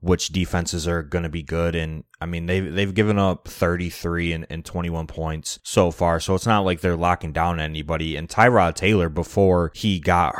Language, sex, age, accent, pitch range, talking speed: English, male, 20-39, American, 85-95 Hz, 200 wpm